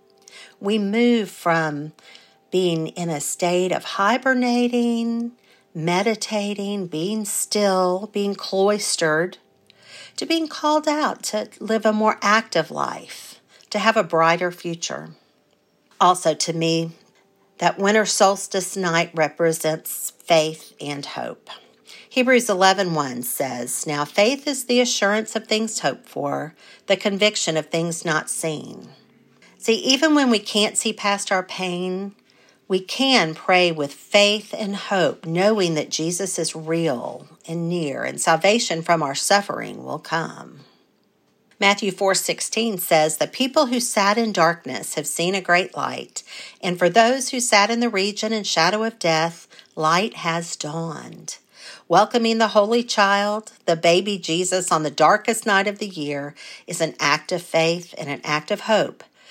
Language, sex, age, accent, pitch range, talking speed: English, female, 50-69, American, 165-220 Hz, 145 wpm